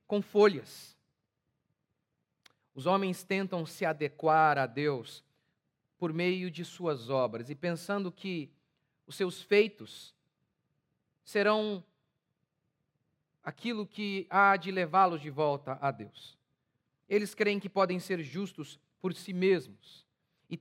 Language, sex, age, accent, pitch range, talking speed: Portuguese, male, 40-59, Brazilian, 140-175 Hz, 115 wpm